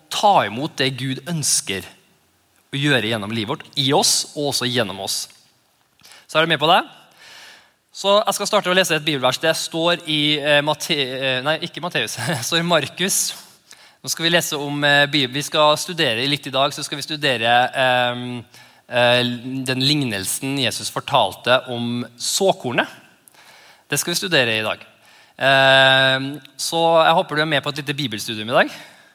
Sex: male